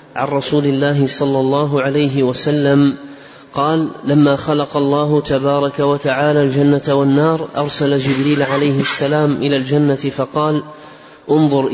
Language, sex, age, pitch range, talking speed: Arabic, male, 30-49, 140-150 Hz, 120 wpm